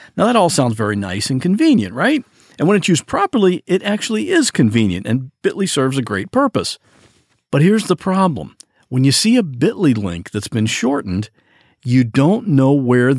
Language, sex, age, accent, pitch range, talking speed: English, male, 50-69, American, 120-175 Hz, 185 wpm